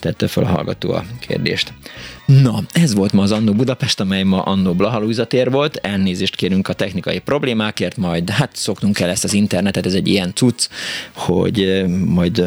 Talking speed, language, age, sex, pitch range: 155 wpm, Hungarian, 30-49, male, 95-110 Hz